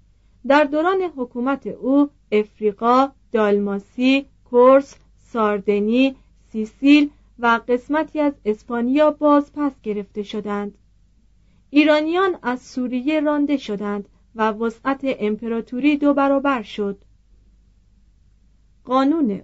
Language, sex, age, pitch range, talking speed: Persian, female, 40-59, 215-285 Hz, 85 wpm